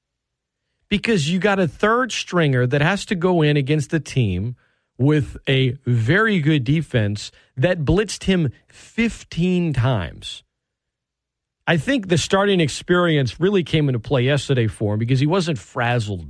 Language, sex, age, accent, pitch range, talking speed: English, male, 40-59, American, 110-170 Hz, 145 wpm